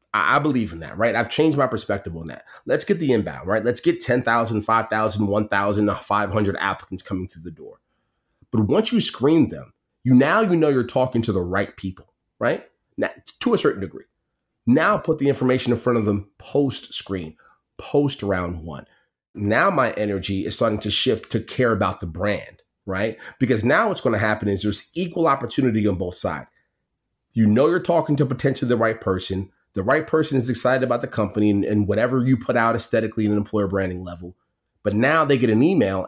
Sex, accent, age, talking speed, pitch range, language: male, American, 30-49, 200 wpm, 105-130 Hz, English